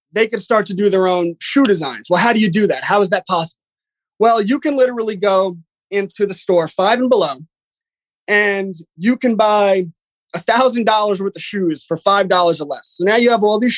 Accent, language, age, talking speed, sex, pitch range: American, English, 20-39, 210 wpm, male, 185-220 Hz